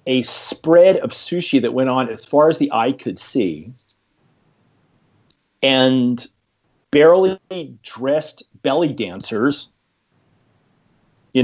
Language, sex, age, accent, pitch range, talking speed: English, male, 40-59, American, 125-165 Hz, 105 wpm